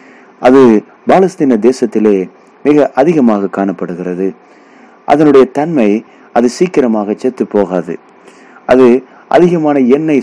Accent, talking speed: native, 90 wpm